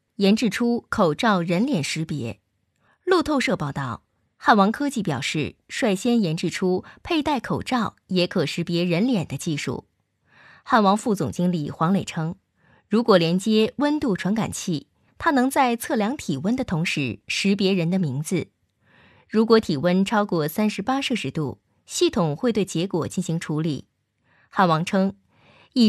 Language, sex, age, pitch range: Chinese, female, 20-39, 155-235 Hz